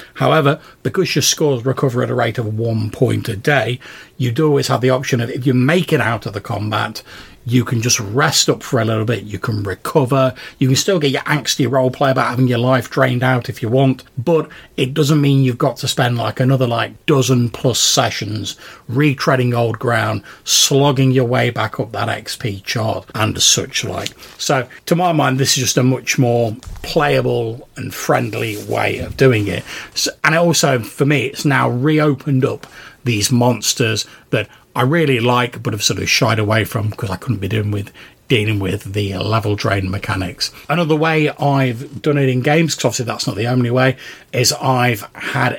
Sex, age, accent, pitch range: male, 40-59, British, 115-140 Hz